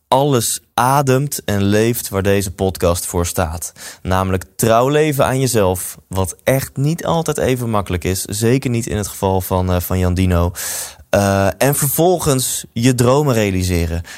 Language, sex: Dutch, male